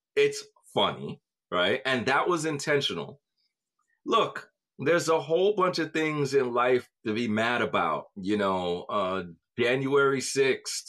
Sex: male